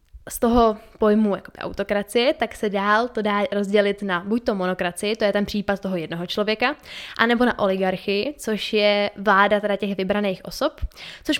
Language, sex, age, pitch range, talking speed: Czech, female, 10-29, 195-230 Hz, 165 wpm